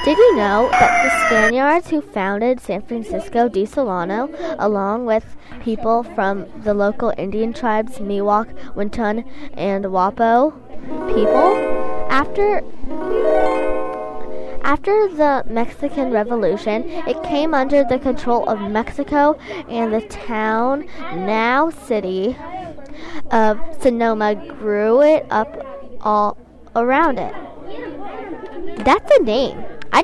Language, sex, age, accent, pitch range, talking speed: English, female, 10-29, American, 210-285 Hz, 110 wpm